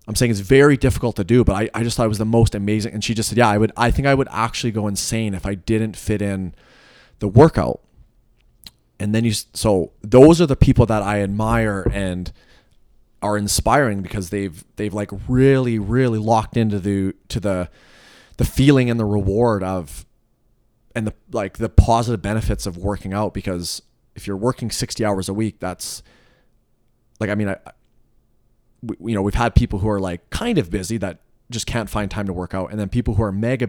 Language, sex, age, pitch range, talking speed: English, male, 30-49, 95-115 Hz, 205 wpm